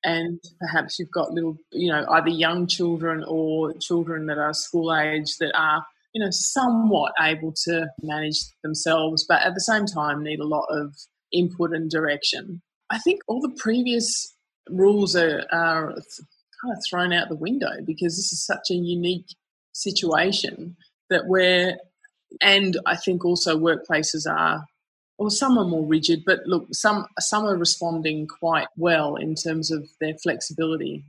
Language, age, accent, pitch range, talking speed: English, 20-39, Australian, 160-185 Hz, 160 wpm